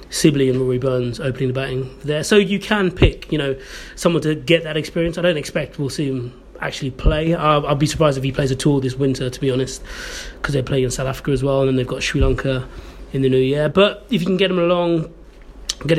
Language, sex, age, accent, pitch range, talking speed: English, male, 30-49, British, 130-165 Hz, 250 wpm